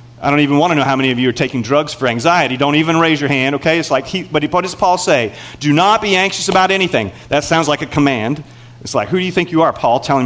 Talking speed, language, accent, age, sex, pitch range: 285 wpm, English, American, 40-59, male, 130-190 Hz